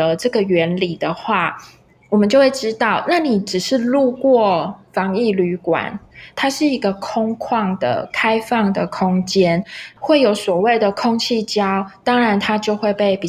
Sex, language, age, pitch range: female, Chinese, 20-39, 185-230 Hz